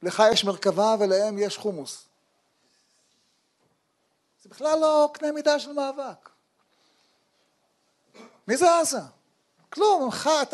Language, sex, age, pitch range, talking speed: Hebrew, male, 40-59, 245-310 Hz, 110 wpm